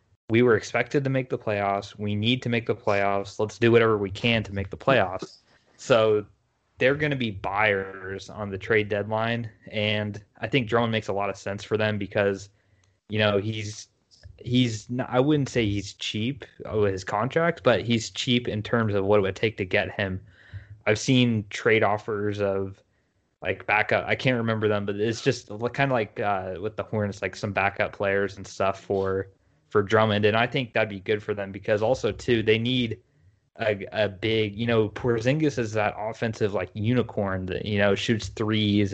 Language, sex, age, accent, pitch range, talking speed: English, male, 20-39, American, 100-115 Hz, 200 wpm